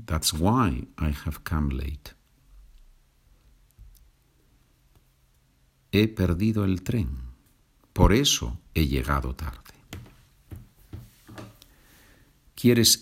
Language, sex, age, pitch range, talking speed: Spanish, male, 50-69, 75-115 Hz, 75 wpm